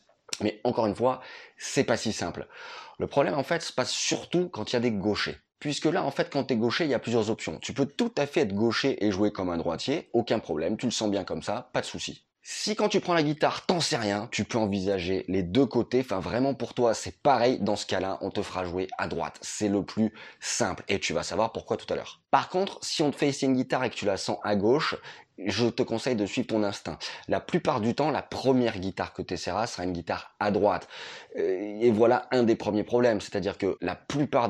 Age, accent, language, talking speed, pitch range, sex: 20-39, French, French, 255 wpm, 100-135 Hz, male